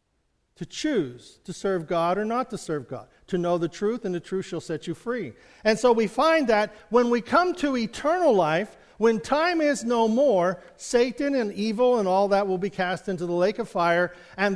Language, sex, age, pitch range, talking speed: English, male, 50-69, 165-225 Hz, 215 wpm